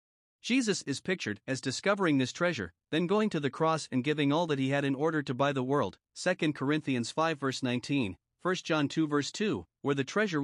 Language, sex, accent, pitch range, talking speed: English, male, American, 135-170 Hz, 215 wpm